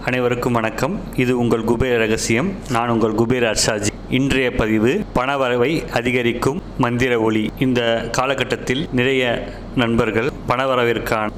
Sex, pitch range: male, 115-135 Hz